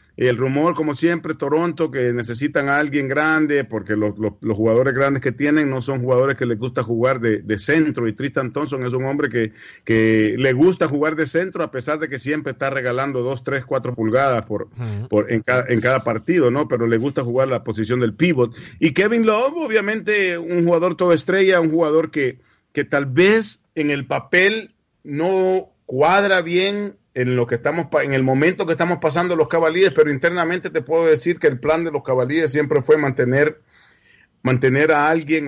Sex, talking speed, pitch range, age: male, 200 wpm, 120-160 Hz, 50-69